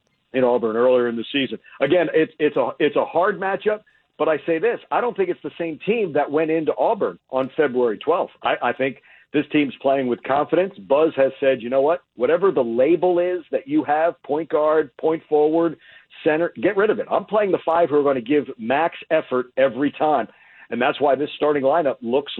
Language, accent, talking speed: English, American, 220 wpm